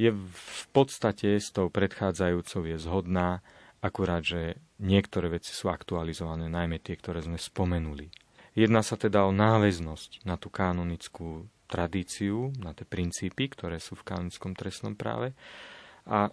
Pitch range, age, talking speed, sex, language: 90-105 Hz, 30-49, 140 wpm, male, Slovak